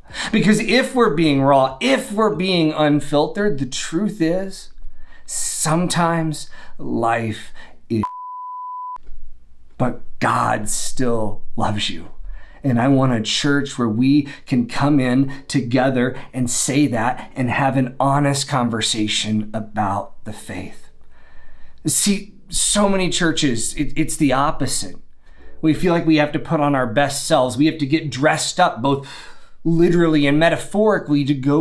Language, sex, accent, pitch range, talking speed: English, male, American, 115-160 Hz, 135 wpm